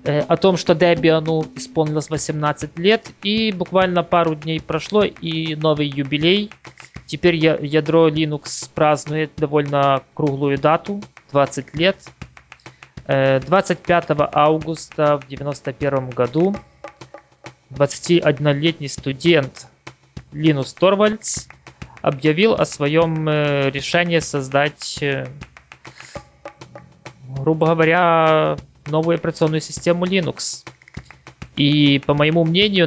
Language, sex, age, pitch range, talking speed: Russian, male, 20-39, 135-160 Hz, 90 wpm